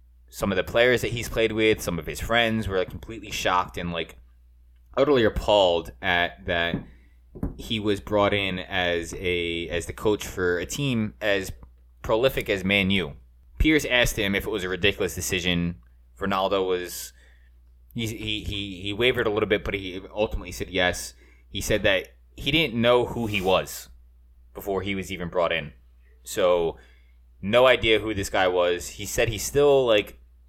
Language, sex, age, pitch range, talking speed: English, male, 20-39, 75-100 Hz, 175 wpm